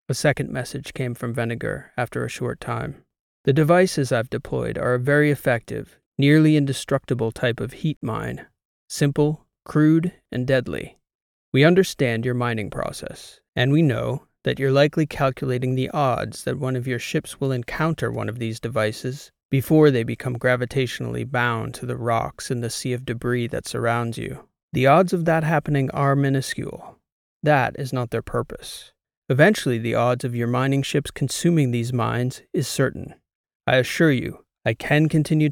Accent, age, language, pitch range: American, 30-49, English, 120-145 Hz